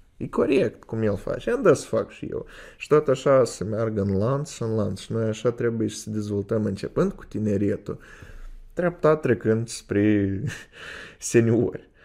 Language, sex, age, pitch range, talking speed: Romanian, male, 20-39, 100-115 Hz, 170 wpm